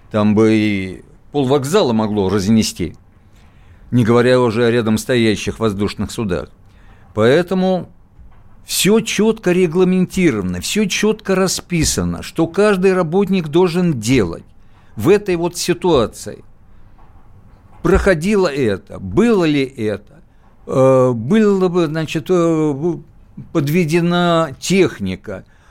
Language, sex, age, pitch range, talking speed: Russian, male, 60-79, 110-170 Hz, 95 wpm